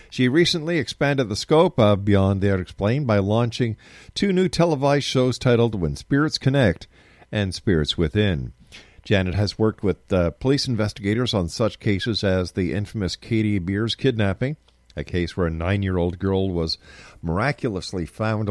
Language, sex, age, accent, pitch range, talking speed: English, male, 50-69, American, 85-115 Hz, 150 wpm